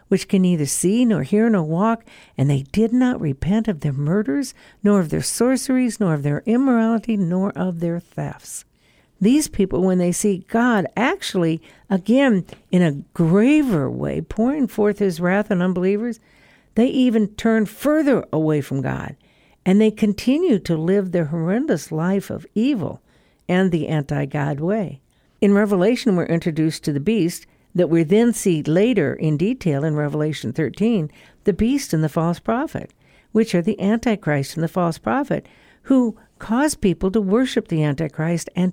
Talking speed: 165 wpm